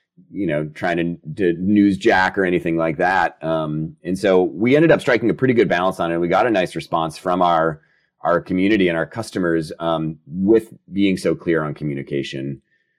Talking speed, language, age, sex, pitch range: 200 wpm, English, 30-49, male, 85-110 Hz